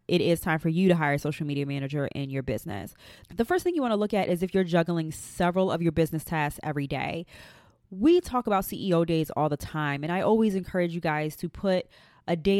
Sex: female